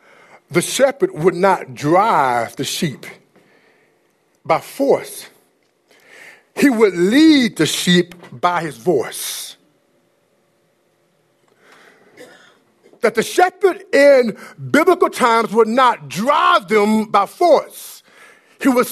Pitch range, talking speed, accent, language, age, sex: 190-295 Hz, 100 wpm, American, English, 50-69, male